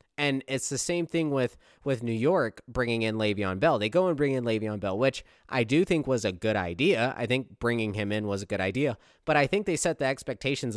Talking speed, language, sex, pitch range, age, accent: 245 wpm, English, male, 105-135 Hz, 20-39, American